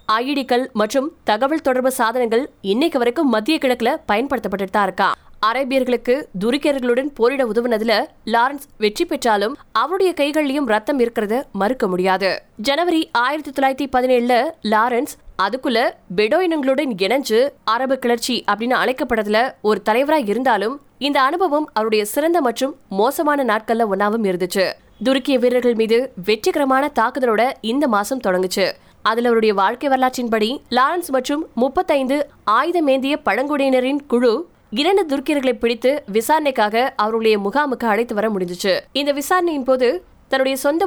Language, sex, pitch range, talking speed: Tamil, female, 215-280 Hz, 60 wpm